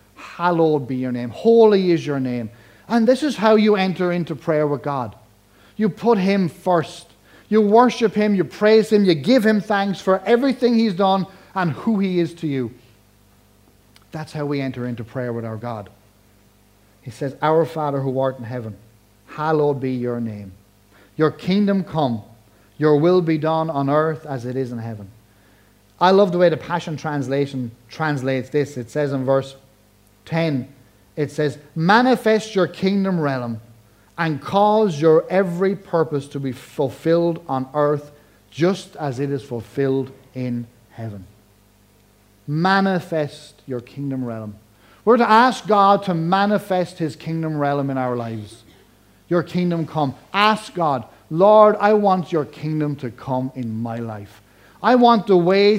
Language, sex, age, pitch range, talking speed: English, male, 30-49, 115-180 Hz, 160 wpm